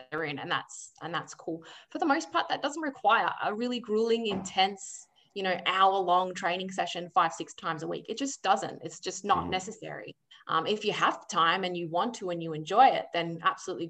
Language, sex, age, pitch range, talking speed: English, female, 20-39, 180-225 Hz, 210 wpm